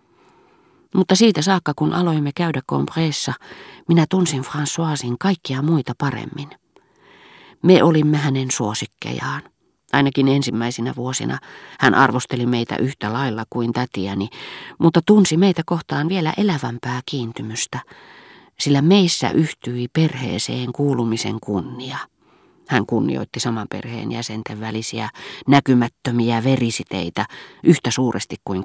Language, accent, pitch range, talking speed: Finnish, native, 125-160 Hz, 105 wpm